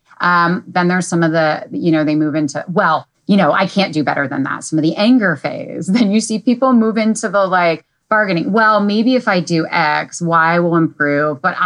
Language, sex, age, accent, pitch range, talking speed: English, female, 30-49, American, 150-205 Hz, 225 wpm